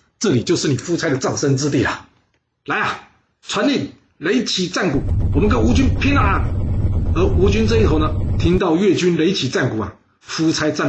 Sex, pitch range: male, 145-220 Hz